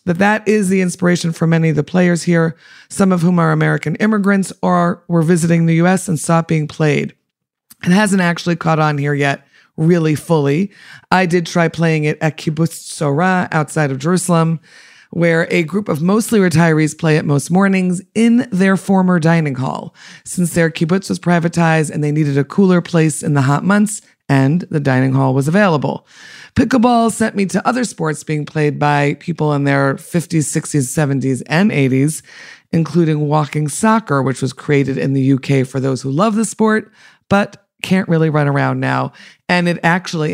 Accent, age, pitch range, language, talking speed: American, 40-59, 145-185 Hz, English, 185 wpm